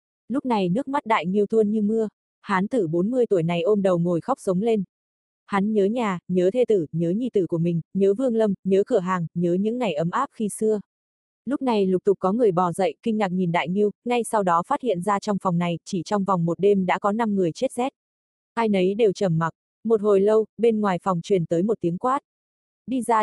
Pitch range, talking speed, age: 185-225 Hz, 245 wpm, 20-39